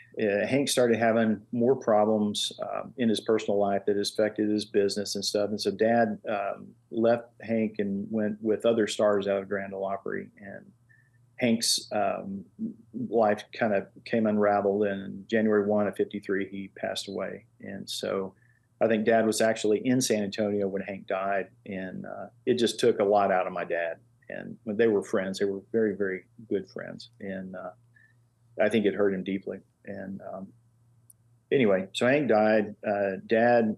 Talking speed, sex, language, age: 180 wpm, male, English, 40-59